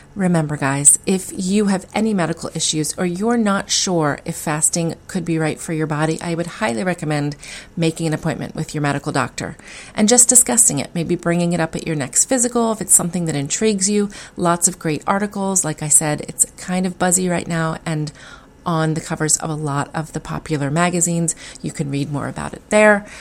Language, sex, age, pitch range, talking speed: English, female, 30-49, 155-190 Hz, 205 wpm